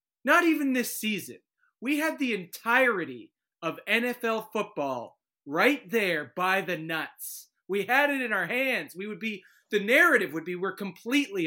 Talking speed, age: 160 wpm, 30-49